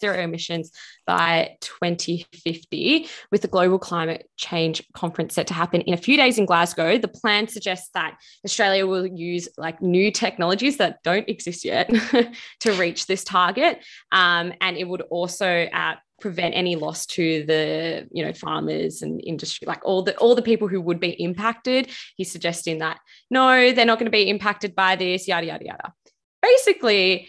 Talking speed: 175 wpm